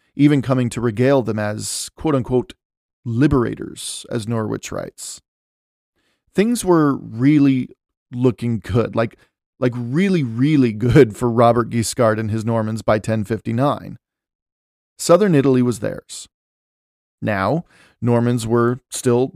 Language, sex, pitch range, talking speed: English, male, 115-140 Hz, 115 wpm